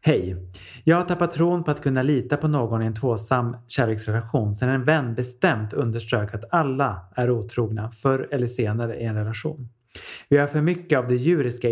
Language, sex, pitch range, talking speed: Swedish, male, 120-155 Hz, 190 wpm